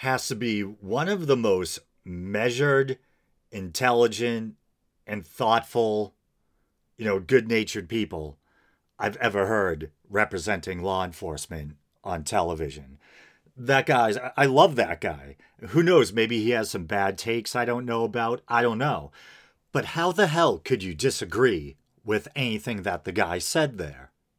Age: 40-59